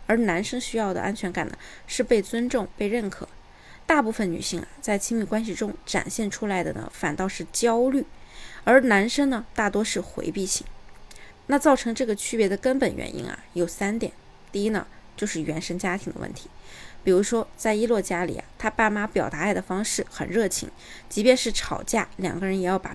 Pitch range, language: 200-250 Hz, Chinese